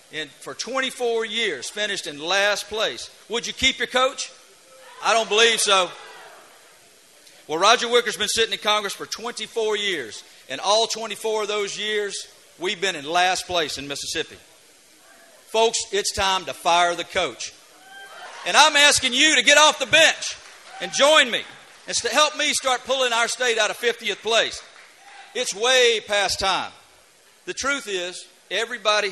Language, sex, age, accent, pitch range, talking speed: English, male, 40-59, American, 200-260 Hz, 160 wpm